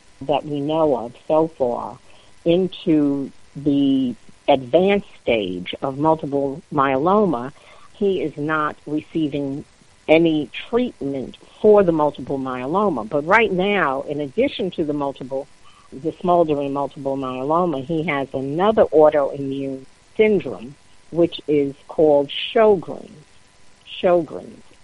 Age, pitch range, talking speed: 50-69, 140-175 Hz, 110 wpm